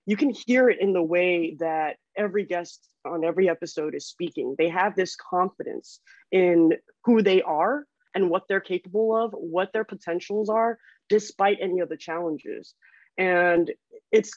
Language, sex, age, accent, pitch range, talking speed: English, female, 20-39, American, 170-220 Hz, 165 wpm